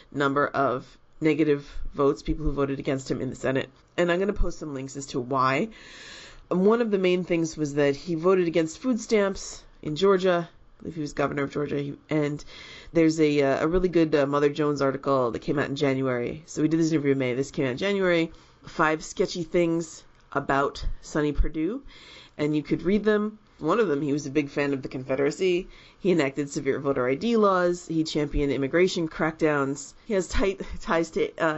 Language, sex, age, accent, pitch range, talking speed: English, female, 30-49, American, 140-170 Hz, 205 wpm